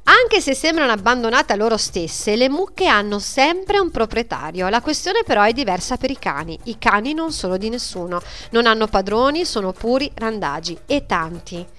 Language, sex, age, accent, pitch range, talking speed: Italian, female, 40-59, native, 205-275 Hz, 180 wpm